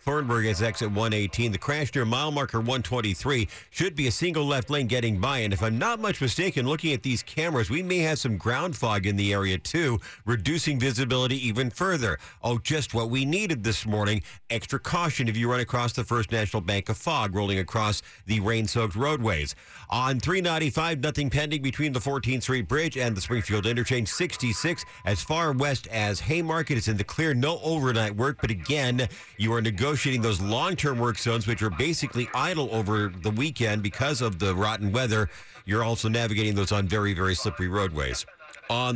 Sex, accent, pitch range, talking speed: male, American, 110-140 Hz, 190 wpm